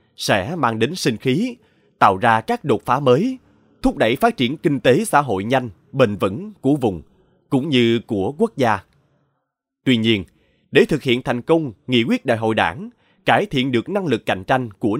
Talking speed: 195 wpm